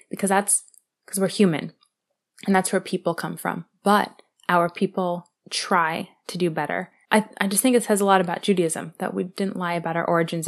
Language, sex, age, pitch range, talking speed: English, female, 20-39, 180-220 Hz, 200 wpm